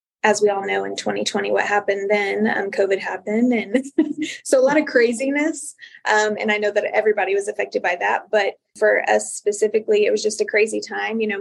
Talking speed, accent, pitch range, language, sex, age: 210 wpm, American, 205-255 Hz, English, female, 20-39